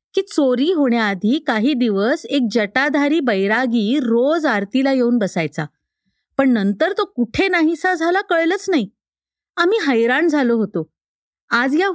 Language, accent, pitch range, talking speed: Marathi, native, 220-315 Hz, 130 wpm